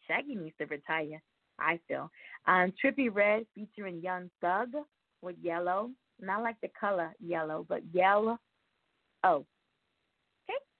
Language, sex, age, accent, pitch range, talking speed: English, female, 20-39, American, 175-235 Hz, 130 wpm